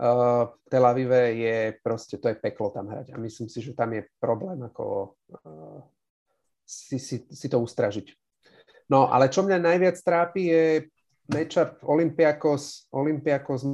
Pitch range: 120-150 Hz